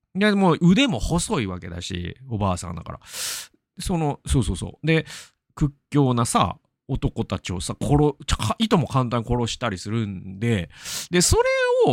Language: Japanese